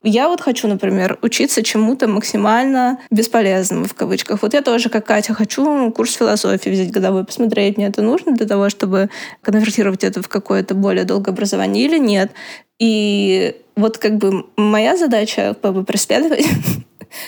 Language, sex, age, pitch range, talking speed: Russian, female, 20-39, 200-230 Hz, 150 wpm